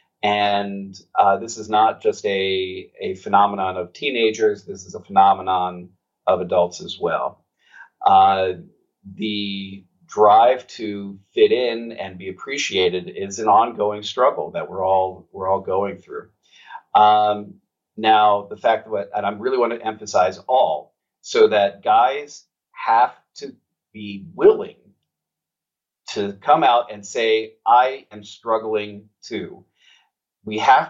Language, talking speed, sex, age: English, 135 wpm, male, 40-59